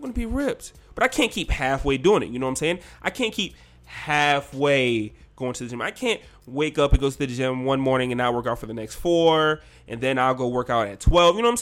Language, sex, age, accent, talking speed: English, male, 20-39, American, 275 wpm